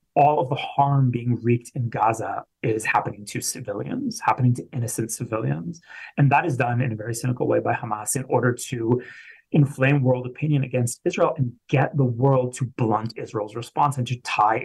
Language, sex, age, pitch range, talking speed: English, male, 30-49, 115-135 Hz, 190 wpm